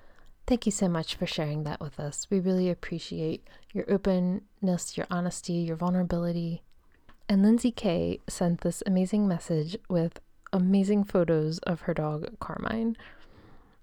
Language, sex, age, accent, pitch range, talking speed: English, female, 20-39, American, 175-205 Hz, 140 wpm